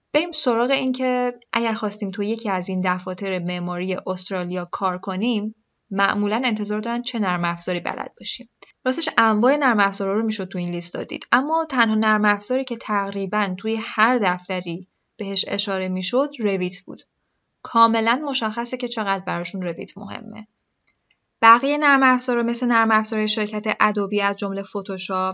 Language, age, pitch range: Persian, 10-29, 190-235 Hz